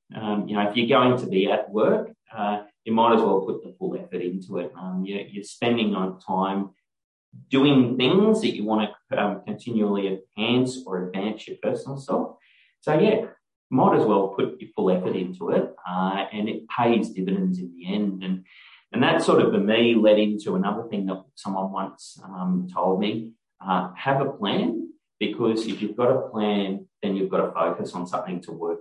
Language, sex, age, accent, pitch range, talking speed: English, male, 30-49, Australian, 95-115 Hz, 200 wpm